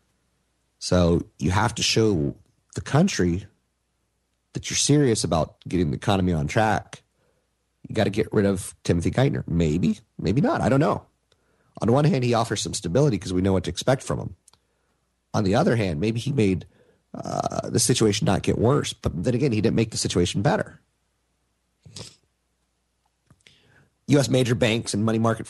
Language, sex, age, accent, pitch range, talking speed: English, male, 30-49, American, 90-125 Hz, 170 wpm